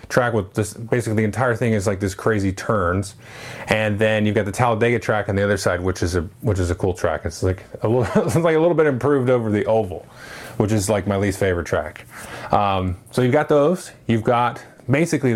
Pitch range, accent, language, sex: 105-135 Hz, American, English, male